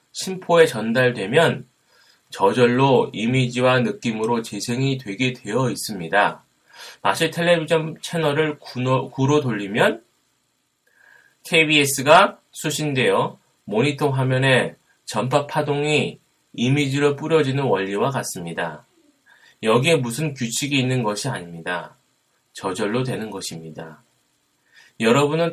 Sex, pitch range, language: male, 120-150 Hz, Korean